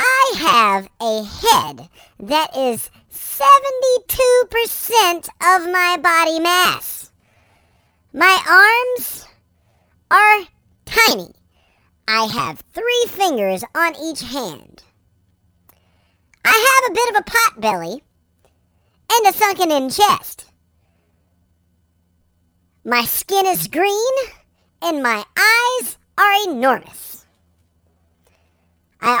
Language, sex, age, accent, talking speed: English, male, 40-59, American, 90 wpm